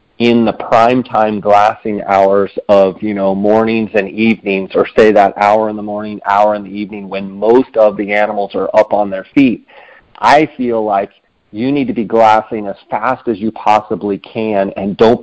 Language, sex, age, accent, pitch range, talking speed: English, male, 40-59, American, 105-115 Hz, 195 wpm